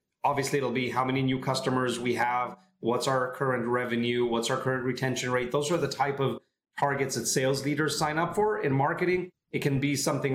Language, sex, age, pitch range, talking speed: English, male, 30-49, 130-160 Hz, 210 wpm